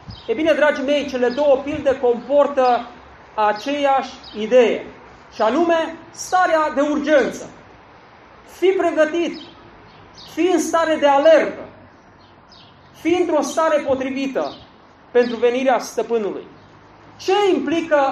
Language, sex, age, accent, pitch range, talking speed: Romanian, male, 40-59, native, 250-315 Hz, 105 wpm